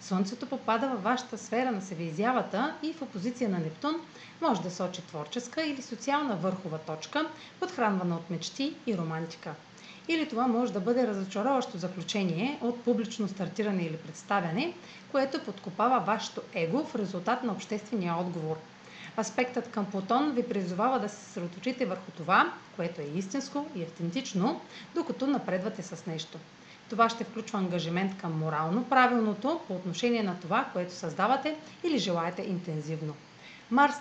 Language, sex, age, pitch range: Bulgarian, female, 30-49, 175-250 Hz